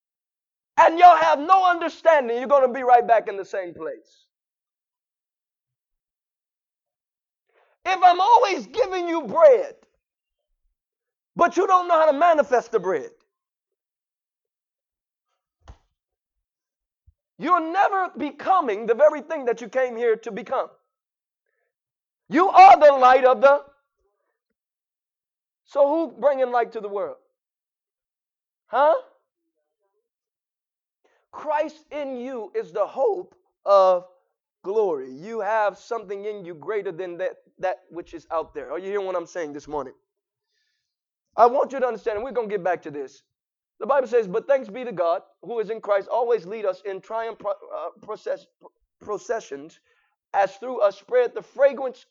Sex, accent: male, American